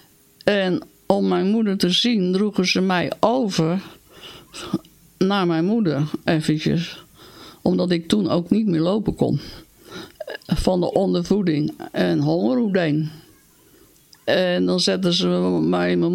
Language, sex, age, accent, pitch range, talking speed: Dutch, female, 60-79, Dutch, 155-195 Hz, 120 wpm